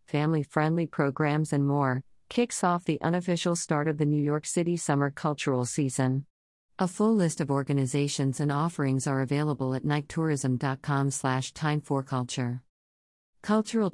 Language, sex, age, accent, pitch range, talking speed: English, female, 50-69, American, 135-165 Hz, 130 wpm